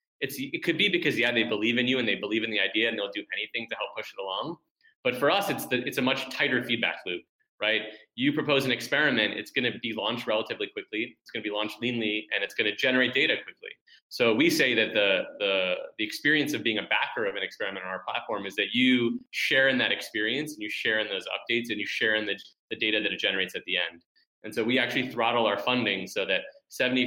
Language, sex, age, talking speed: English, male, 20-39, 255 wpm